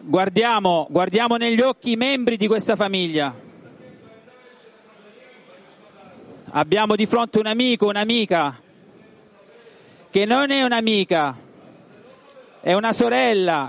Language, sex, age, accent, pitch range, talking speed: Italian, male, 40-59, native, 200-245 Hz, 95 wpm